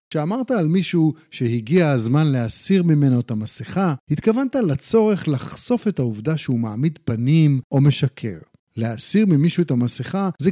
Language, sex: Hebrew, male